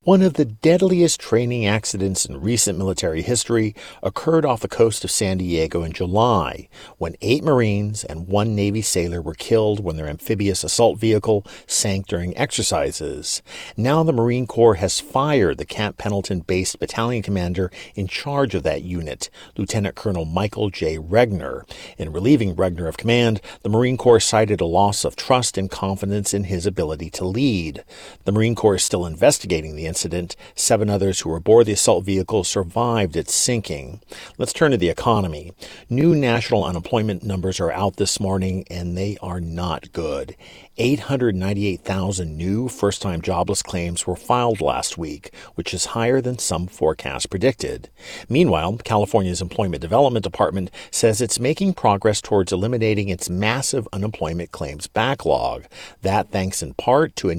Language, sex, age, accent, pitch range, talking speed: English, male, 50-69, American, 90-115 Hz, 160 wpm